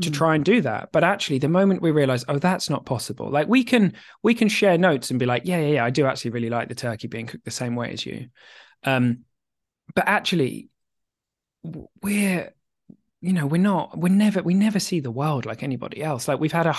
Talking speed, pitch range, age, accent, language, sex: 230 wpm, 120-160 Hz, 20-39, British, English, male